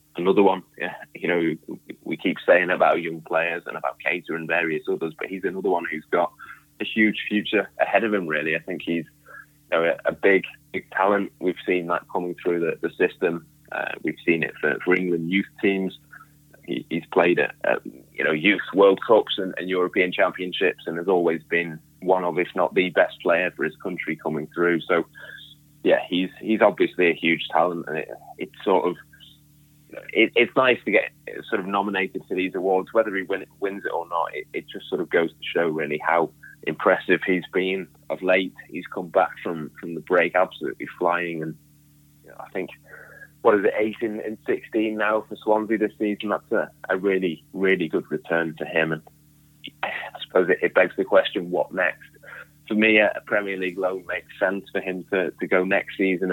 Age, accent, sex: 20-39, British, male